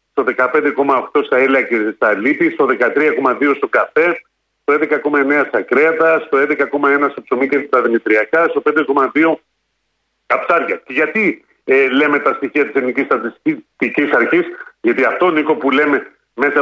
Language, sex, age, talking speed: Greek, male, 40-59, 150 wpm